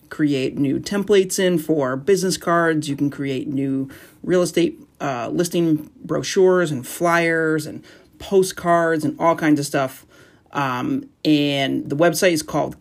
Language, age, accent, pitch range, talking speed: English, 30-49, American, 135-165 Hz, 145 wpm